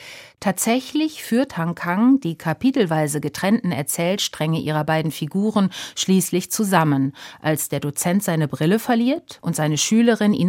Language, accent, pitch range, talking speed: German, German, 155-215 Hz, 130 wpm